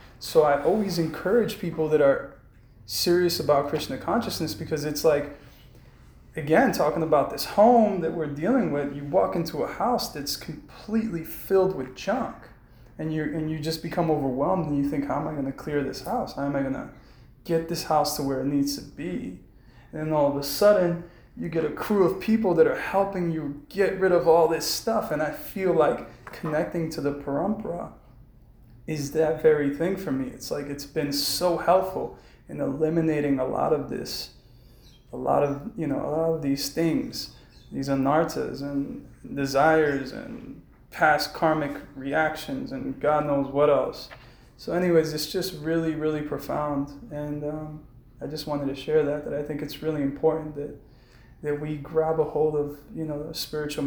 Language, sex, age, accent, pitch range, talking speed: English, male, 20-39, American, 140-165 Hz, 185 wpm